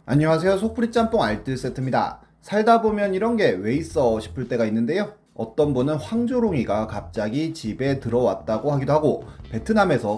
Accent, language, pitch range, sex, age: native, Korean, 110-160 Hz, male, 30-49